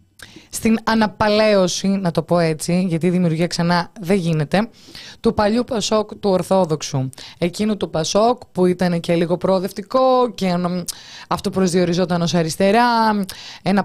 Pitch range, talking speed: 170-215 Hz, 135 wpm